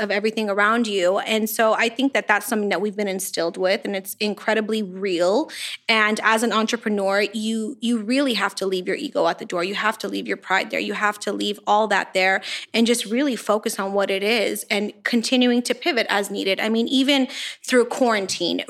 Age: 20-39